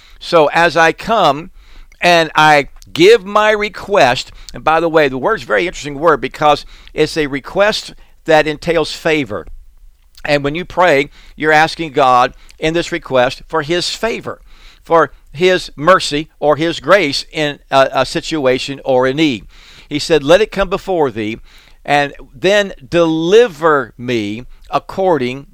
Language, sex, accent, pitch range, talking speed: English, male, American, 125-160 Hz, 155 wpm